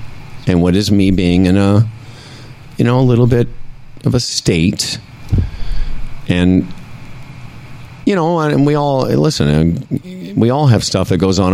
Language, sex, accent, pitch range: English, male, American, 90-125 Hz